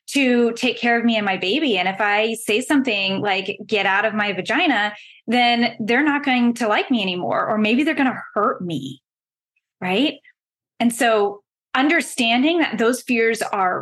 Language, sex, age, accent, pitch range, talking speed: English, female, 20-39, American, 210-260 Hz, 180 wpm